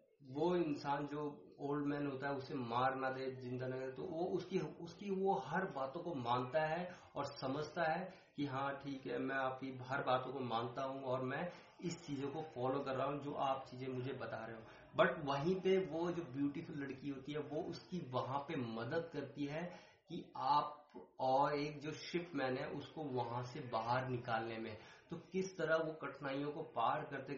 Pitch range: 130-165 Hz